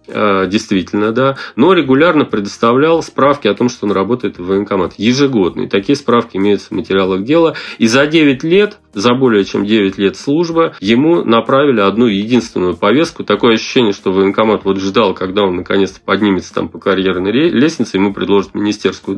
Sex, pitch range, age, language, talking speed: male, 100-135 Hz, 30-49, Russian, 165 wpm